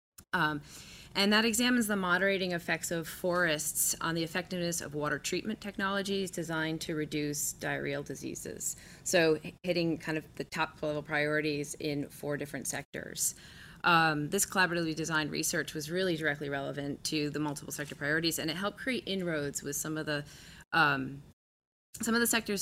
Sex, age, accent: female, 20-39, American